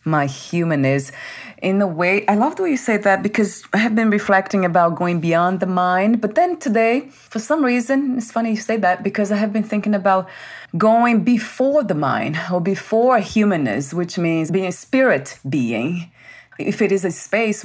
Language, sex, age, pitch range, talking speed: English, female, 30-49, 140-195 Hz, 195 wpm